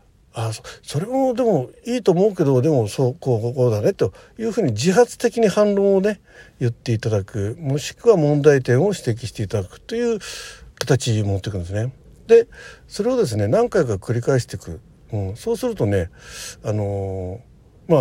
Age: 60-79